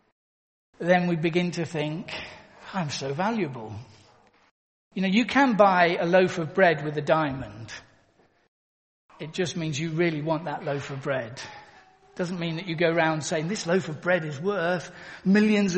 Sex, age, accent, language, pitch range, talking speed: male, 50-69, British, English, 165-240 Hz, 165 wpm